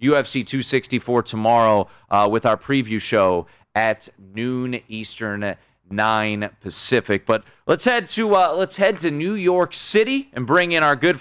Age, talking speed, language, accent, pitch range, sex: 30-49, 155 wpm, English, American, 115-170 Hz, male